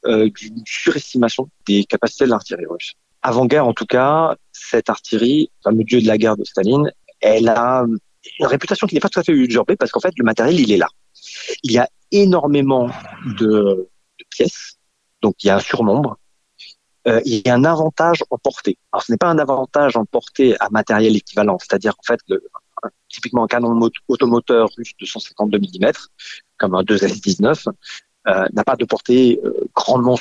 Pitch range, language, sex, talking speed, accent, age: 110-135 Hz, French, male, 195 wpm, French, 40-59